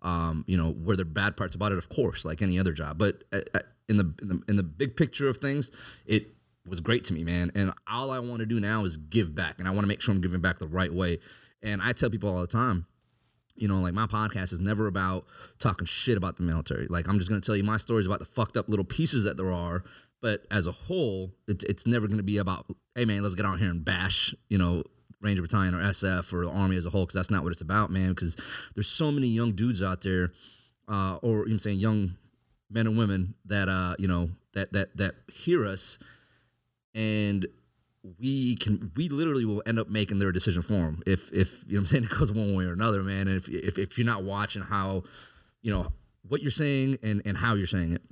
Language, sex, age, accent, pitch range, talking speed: English, male, 30-49, American, 90-110 Hz, 250 wpm